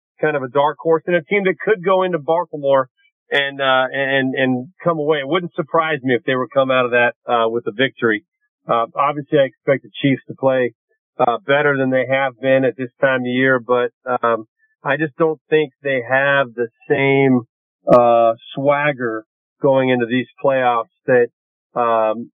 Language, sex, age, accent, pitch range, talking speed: English, male, 40-59, American, 125-155 Hz, 190 wpm